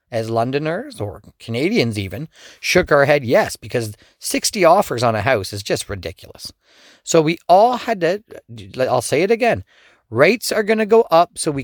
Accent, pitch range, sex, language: American, 115-165 Hz, male, English